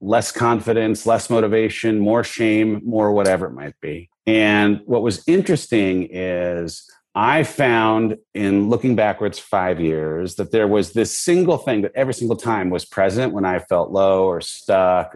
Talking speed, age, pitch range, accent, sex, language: 160 wpm, 30-49, 95-120 Hz, American, male, English